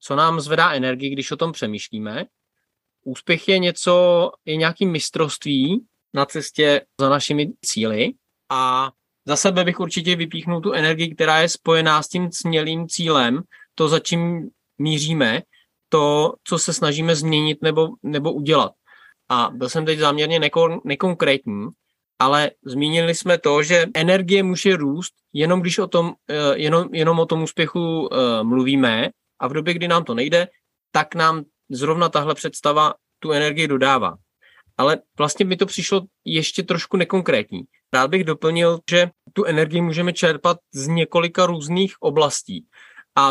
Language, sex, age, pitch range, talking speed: Czech, male, 20-39, 150-175 Hz, 150 wpm